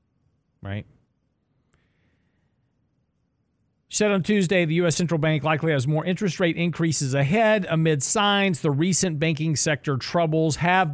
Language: English